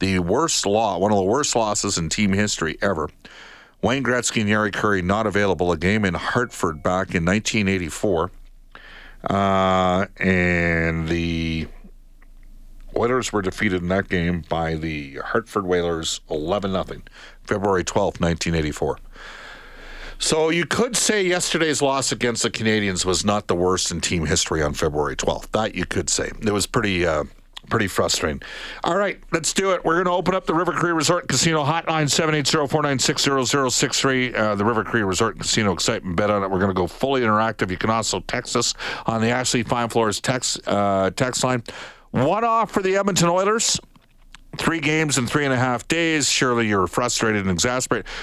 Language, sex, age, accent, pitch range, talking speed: English, male, 50-69, American, 95-135 Hz, 185 wpm